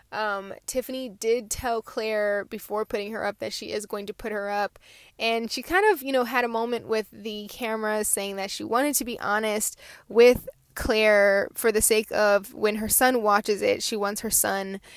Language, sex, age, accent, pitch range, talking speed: English, female, 10-29, American, 200-255 Hz, 205 wpm